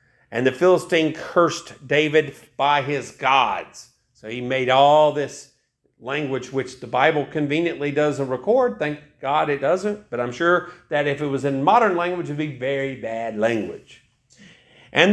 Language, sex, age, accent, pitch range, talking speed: English, male, 50-69, American, 130-175 Hz, 160 wpm